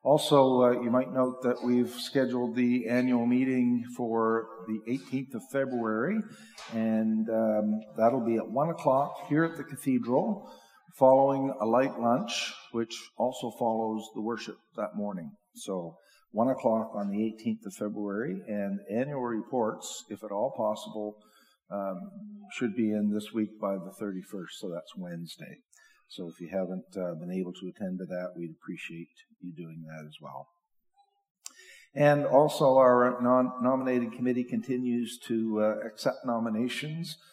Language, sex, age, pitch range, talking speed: English, male, 50-69, 105-130 Hz, 150 wpm